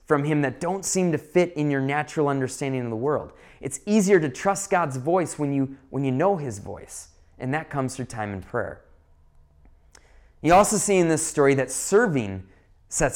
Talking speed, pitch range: 195 wpm, 120-175 Hz